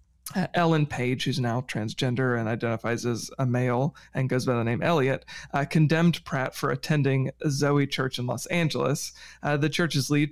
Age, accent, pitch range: 30-49, American, 125-150 Hz